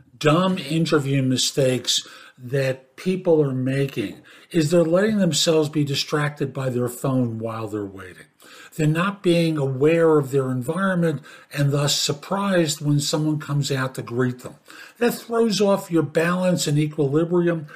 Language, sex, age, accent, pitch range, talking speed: English, male, 50-69, American, 130-170 Hz, 145 wpm